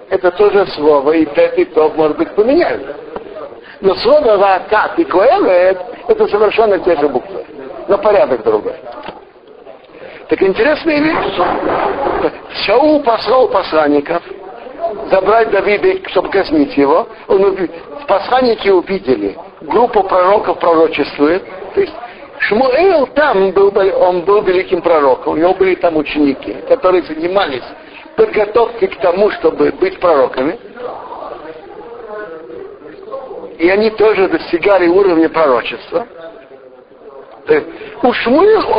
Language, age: Russian, 60-79